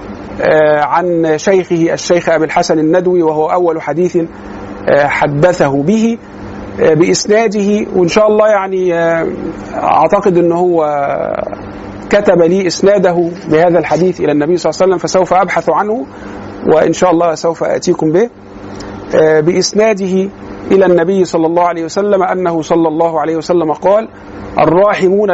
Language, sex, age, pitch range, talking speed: Arabic, male, 50-69, 150-190 Hz, 125 wpm